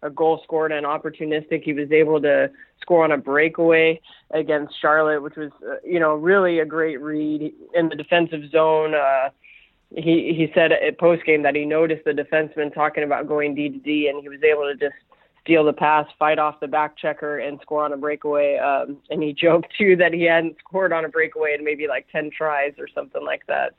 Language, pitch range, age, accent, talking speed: English, 150-165 Hz, 20-39, American, 215 wpm